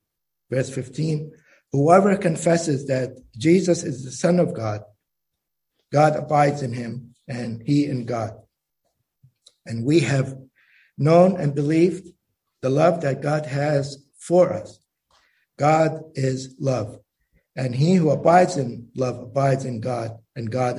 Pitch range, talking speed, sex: 125-155 Hz, 135 wpm, male